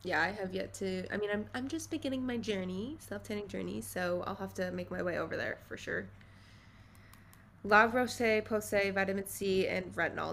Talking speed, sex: 190 wpm, female